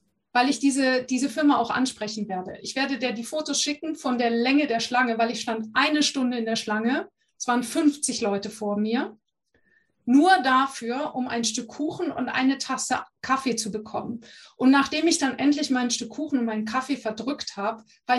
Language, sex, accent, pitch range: German, female, German, 230-280 Hz